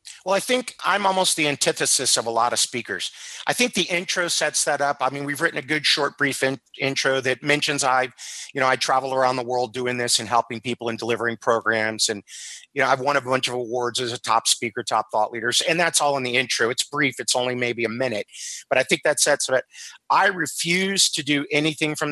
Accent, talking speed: American, 240 wpm